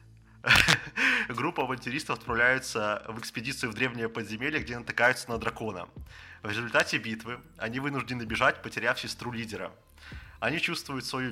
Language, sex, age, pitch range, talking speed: Russian, male, 20-39, 110-130 Hz, 125 wpm